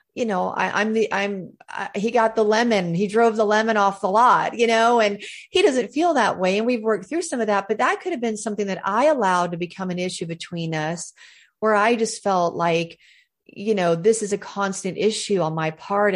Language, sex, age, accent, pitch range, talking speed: English, female, 40-59, American, 180-225 Hz, 230 wpm